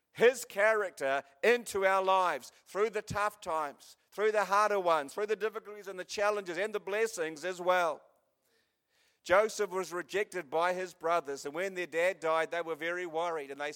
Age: 50-69